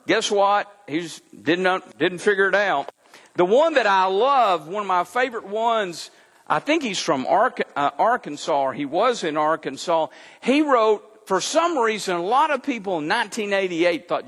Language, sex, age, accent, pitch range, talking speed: English, male, 50-69, American, 180-260 Hz, 175 wpm